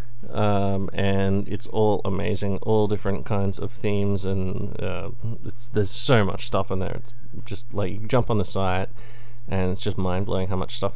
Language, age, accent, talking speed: English, 30-49, American, 185 wpm